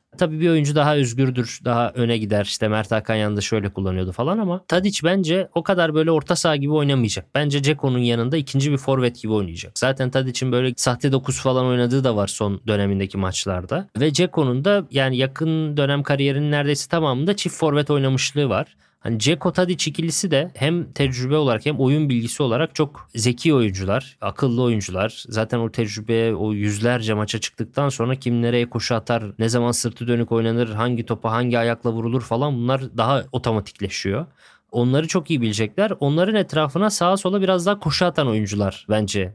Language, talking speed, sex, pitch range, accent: Turkish, 175 wpm, male, 110-150 Hz, native